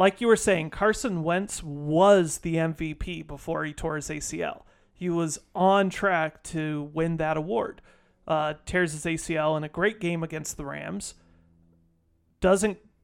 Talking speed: 155 wpm